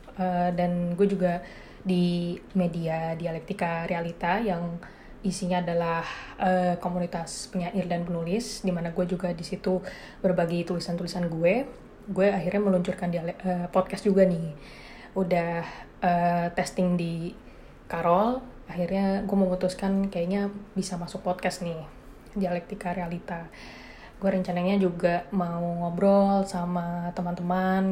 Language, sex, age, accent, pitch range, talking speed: English, female, 20-39, Indonesian, 175-190 Hz, 115 wpm